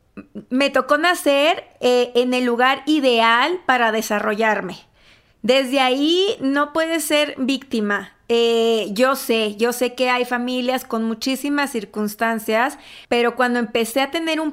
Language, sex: Spanish, female